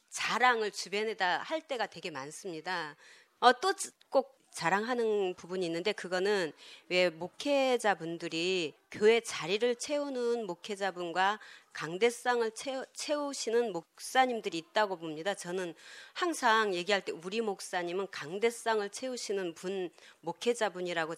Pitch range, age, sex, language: 185-250 Hz, 30-49, female, Korean